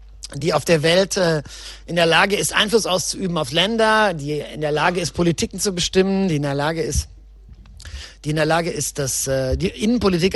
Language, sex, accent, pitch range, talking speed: German, male, German, 160-200 Hz, 190 wpm